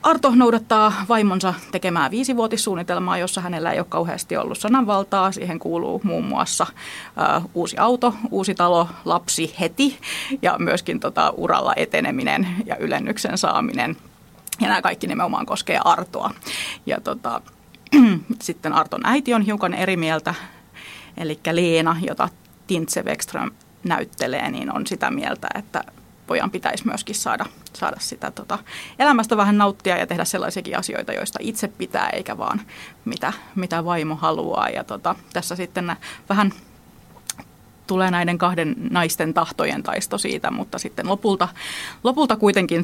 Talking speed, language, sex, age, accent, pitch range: 135 wpm, Finnish, female, 30-49, native, 175-250 Hz